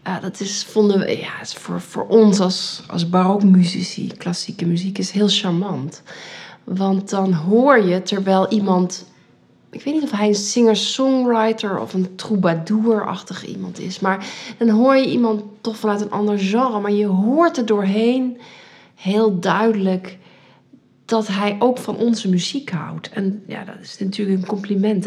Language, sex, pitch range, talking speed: Dutch, female, 185-215 Hz, 160 wpm